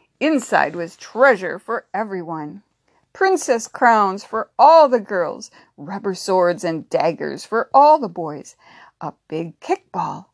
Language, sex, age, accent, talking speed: English, female, 60-79, American, 130 wpm